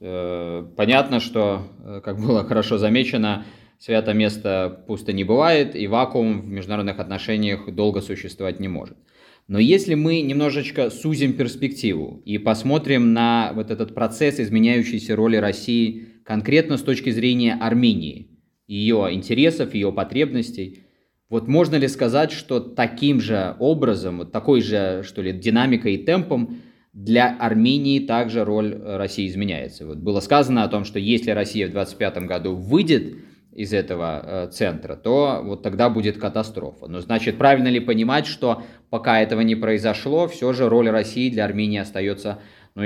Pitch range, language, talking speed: 105-130 Hz, Russian, 145 wpm